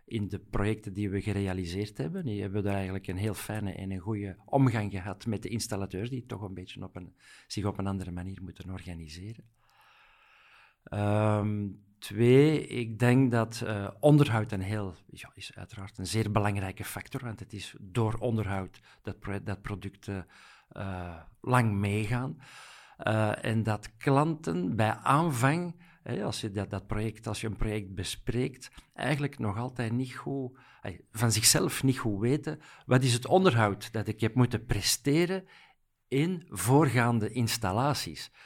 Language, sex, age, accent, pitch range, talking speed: Dutch, male, 50-69, Dutch, 100-125 Hz, 160 wpm